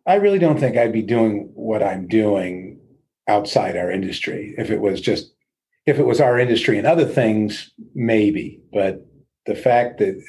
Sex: male